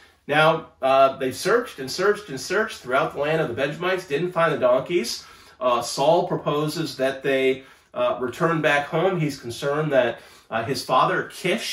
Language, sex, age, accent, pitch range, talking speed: English, male, 40-59, American, 130-170 Hz, 175 wpm